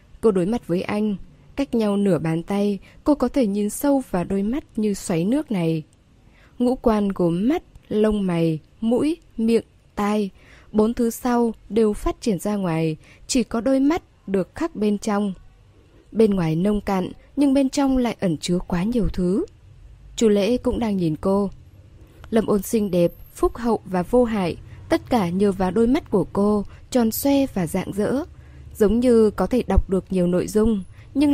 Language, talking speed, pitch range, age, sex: Vietnamese, 190 wpm, 180-245 Hz, 10-29, female